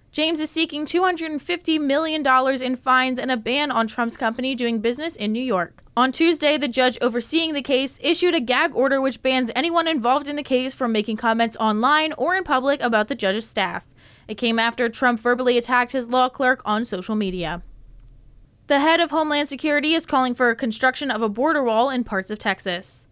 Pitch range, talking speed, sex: 230-280 Hz, 195 wpm, female